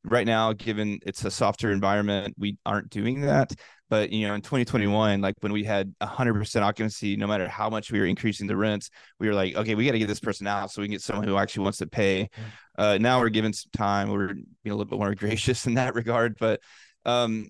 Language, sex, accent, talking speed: English, male, American, 240 wpm